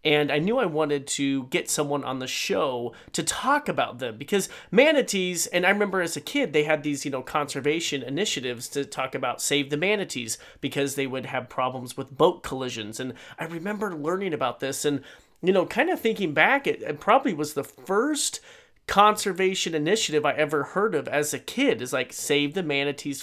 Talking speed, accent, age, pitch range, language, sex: 200 wpm, American, 30-49, 140-180 Hz, English, male